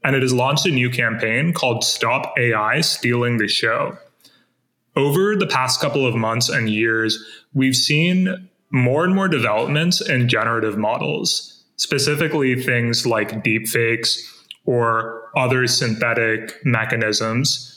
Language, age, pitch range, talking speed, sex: English, 20-39, 115-135 Hz, 130 wpm, male